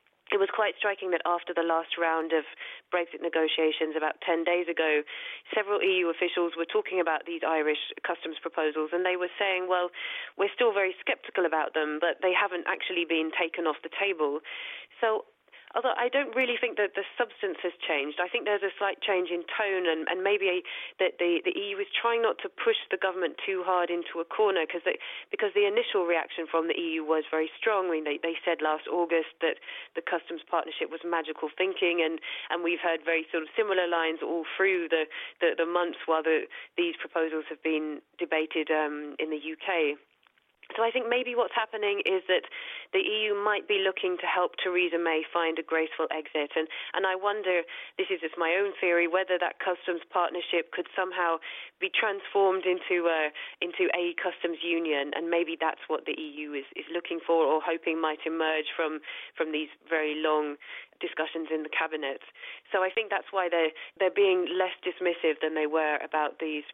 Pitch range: 160-195 Hz